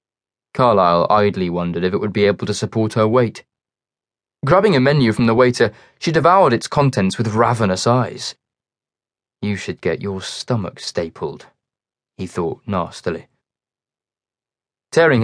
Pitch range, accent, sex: 100-130 Hz, British, male